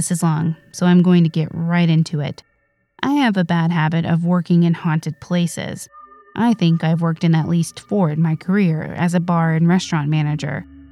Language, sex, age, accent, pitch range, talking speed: English, female, 20-39, American, 160-195 Hz, 210 wpm